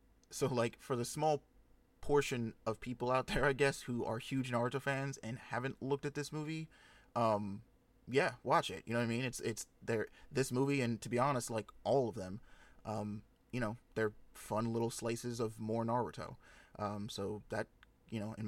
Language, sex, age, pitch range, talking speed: English, male, 20-39, 110-135 Hz, 200 wpm